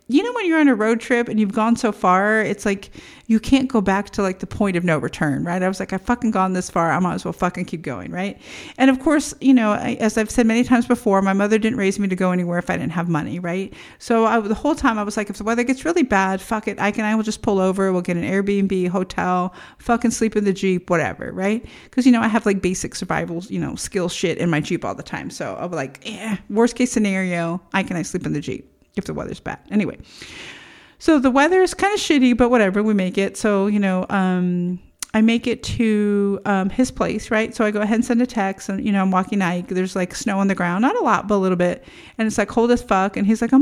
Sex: female